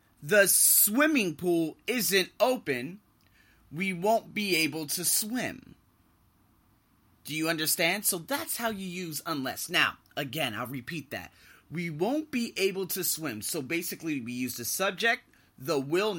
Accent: American